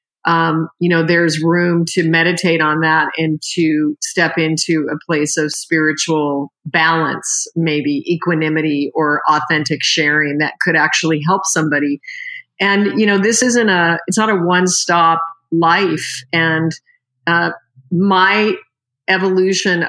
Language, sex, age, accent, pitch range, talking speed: English, female, 40-59, American, 155-185 Hz, 130 wpm